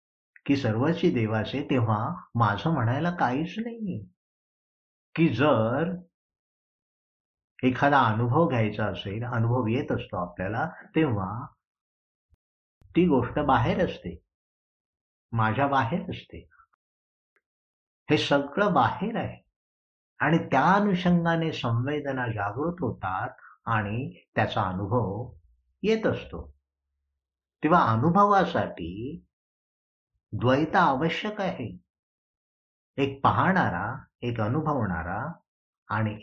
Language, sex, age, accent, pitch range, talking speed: Marathi, male, 60-79, native, 90-150 Hz, 85 wpm